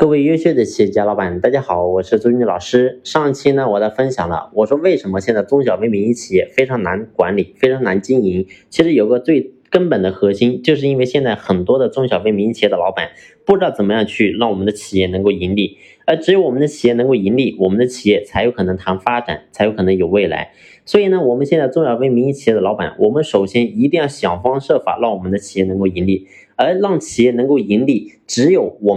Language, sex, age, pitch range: Chinese, male, 20-39, 95-145 Hz